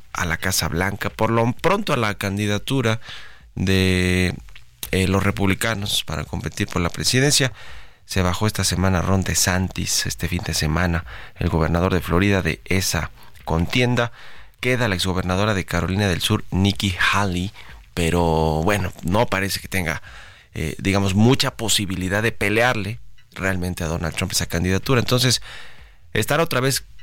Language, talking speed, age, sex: Spanish, 150 wpm, 30-49, male